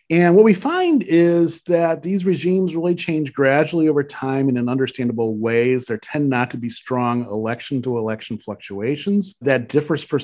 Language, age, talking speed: English, 40-59, 175 wpm